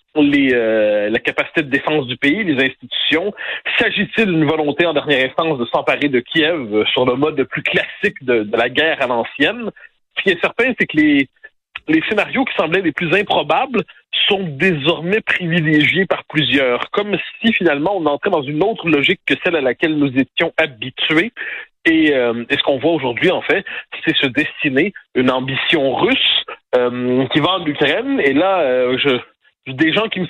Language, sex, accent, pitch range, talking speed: French, male, French, 140-185 Hz, 190 wpm